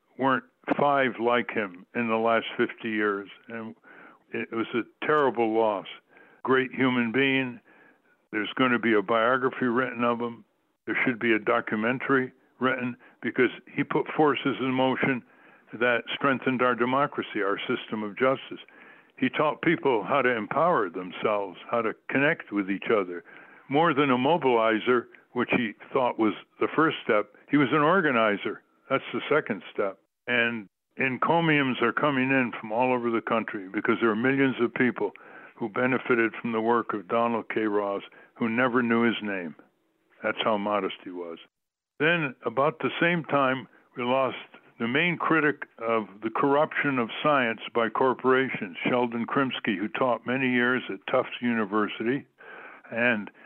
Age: 60-79